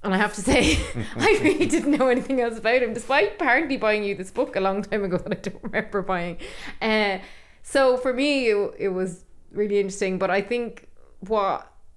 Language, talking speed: English, 205 wpm